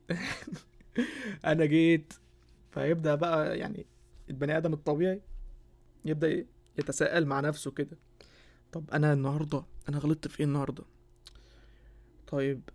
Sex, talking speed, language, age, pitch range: male, 105 wpm, Arabic, 20-39, 135-165 Hz